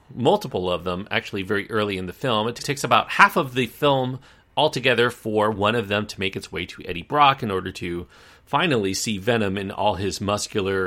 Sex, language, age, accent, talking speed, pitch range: male, English, 40-59, American, 210 wpm, 95-130 Hz